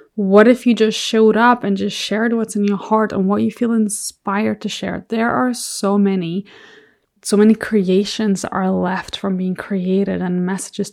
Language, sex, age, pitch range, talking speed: English, female, 20-39, 195-235 Hz, 185 wpm